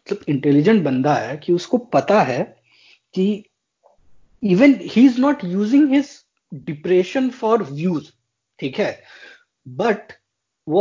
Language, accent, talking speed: Hindi, native, 115 wpm